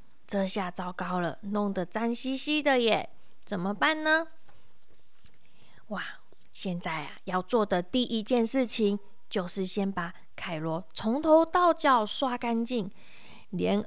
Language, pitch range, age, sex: Chinese, 205-285 Hz, 20-39, female